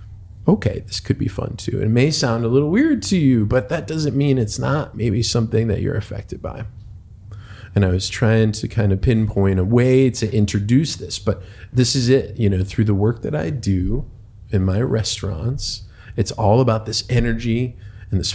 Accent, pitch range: American, 100-125 Hz